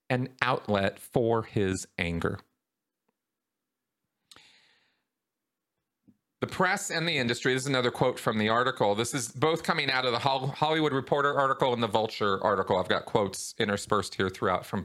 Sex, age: male, 40-59